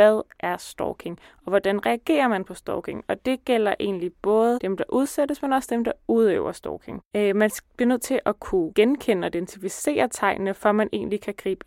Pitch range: 195-235 Hz